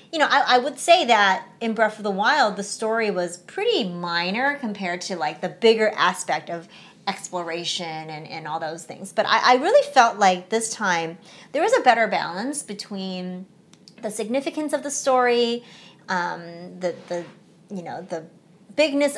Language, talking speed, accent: English, 175 wpm, American